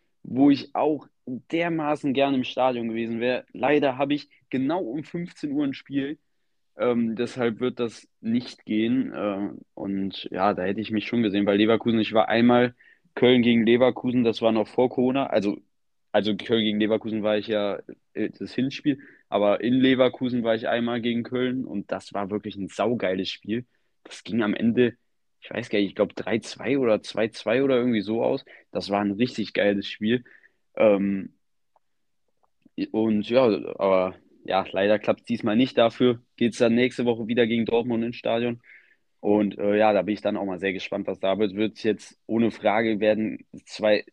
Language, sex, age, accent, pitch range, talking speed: German, male, 20-39, German, 105-125 Hz, 185 wpm